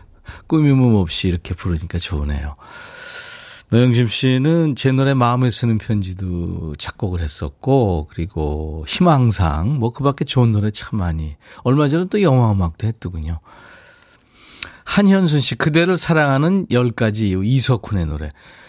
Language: Korean